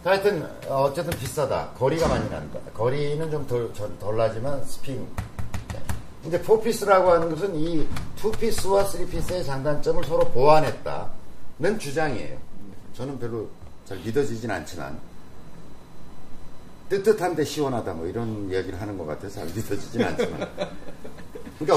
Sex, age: male, 50-69